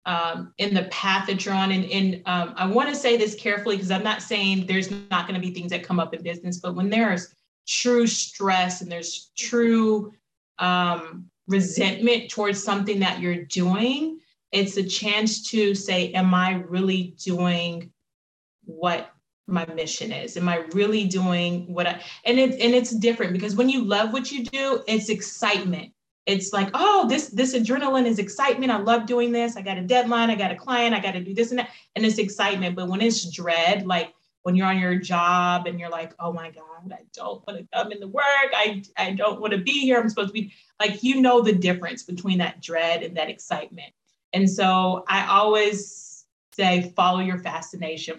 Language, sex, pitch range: English, female, 180-220 Hz